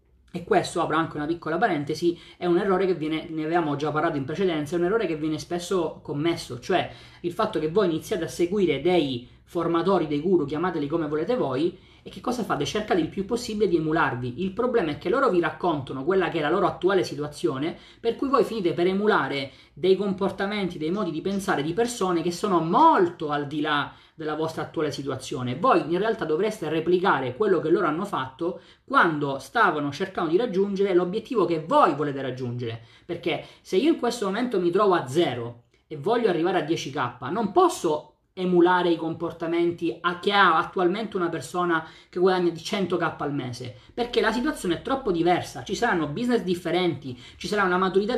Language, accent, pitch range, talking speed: Italian, native, 155-195 Hz, 195 wpm